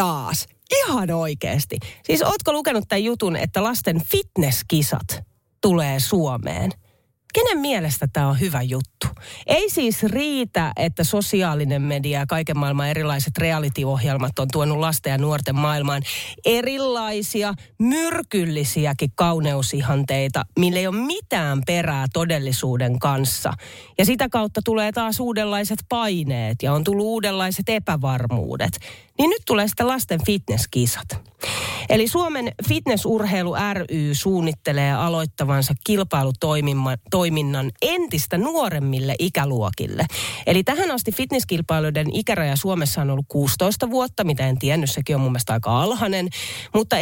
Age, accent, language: 30-49, native, Finnish